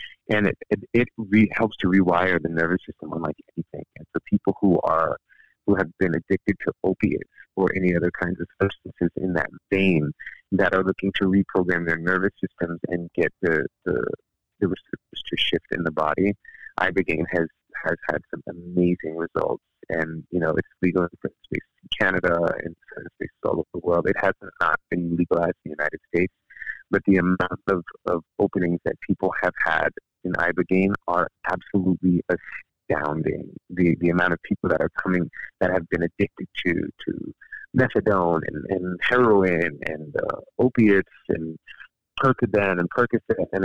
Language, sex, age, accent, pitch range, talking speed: English, male, 30-49, American, 85-100 Hz, 170 wpm